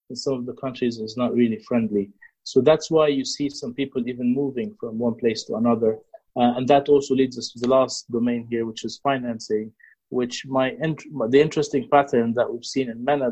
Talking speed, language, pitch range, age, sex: 220 wpm, English, 120-135 Hz, 30-49, male